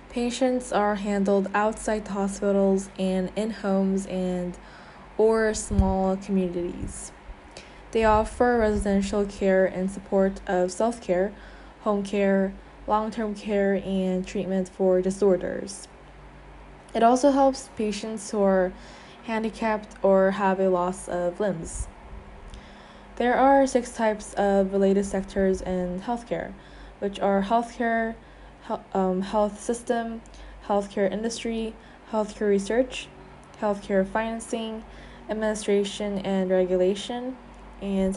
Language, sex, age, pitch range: Korean, female, 10-29, 190-220 Hz